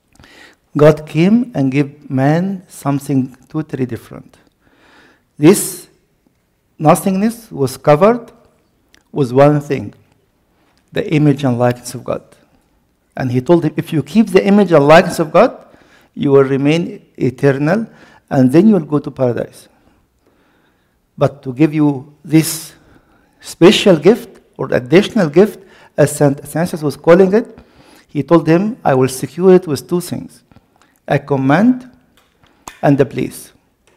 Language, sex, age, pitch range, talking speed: English, male, 60-79, 140-175 Hz, 135 wpm